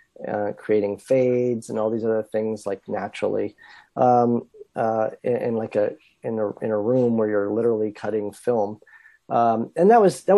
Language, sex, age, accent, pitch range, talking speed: English, male, 40-59, American, 120-160 Hz, 180 wpm